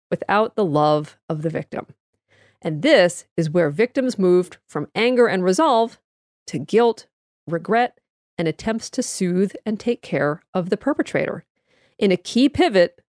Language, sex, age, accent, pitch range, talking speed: English, female, 40-59, American, 180-235 Hz, 150 wpm